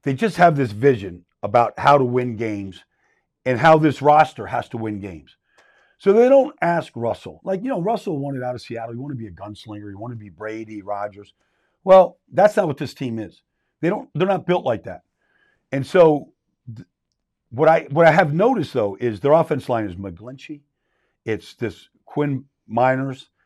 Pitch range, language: 110-160 Hz, English